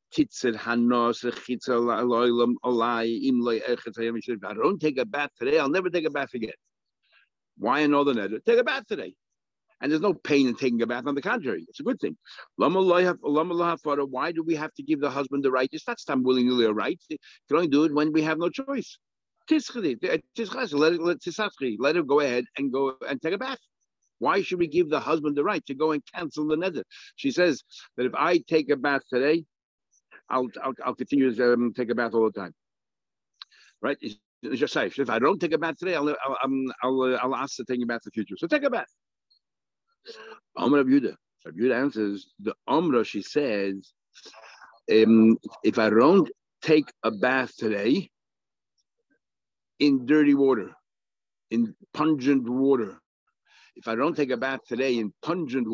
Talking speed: 175 wpm